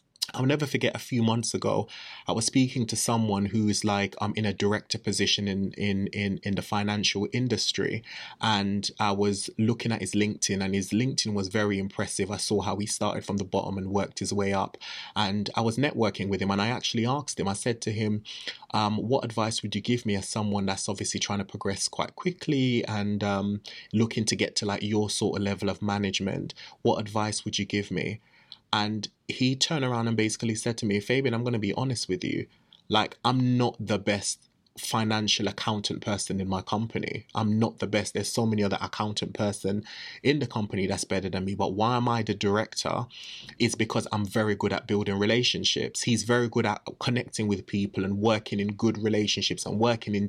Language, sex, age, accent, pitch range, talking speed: English, male, 20-39, British, 100-115 Hz, 210 wpm